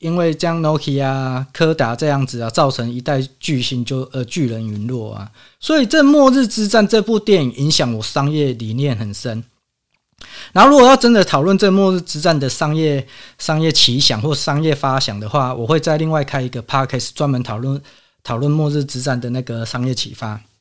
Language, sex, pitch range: Chinese, male, 130-170 Hz